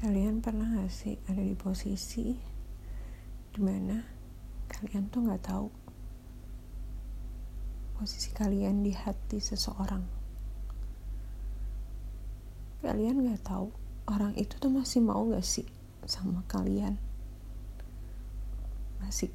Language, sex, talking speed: Indonesian, female, 90 wpm